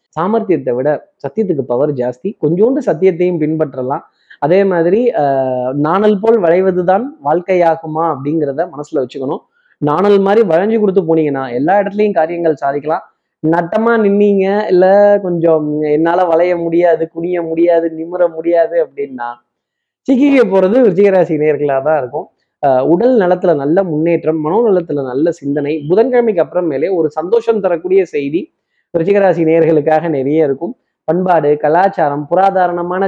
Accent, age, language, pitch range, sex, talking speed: native, 20-39, Tamil, 155-205 Hz, male, 115 wpm